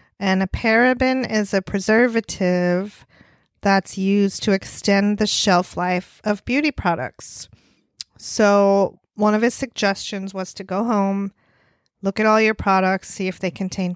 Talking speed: 145 wpm